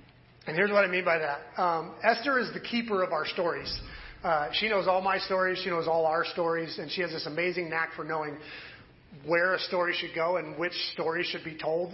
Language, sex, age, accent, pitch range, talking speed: English, male, 40-59, American, 175-235 Hz, 225 wpm